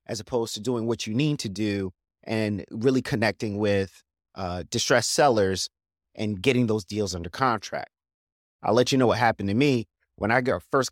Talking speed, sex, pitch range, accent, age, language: 180 wpm, male, 95-125 Hz, American, 30-49, English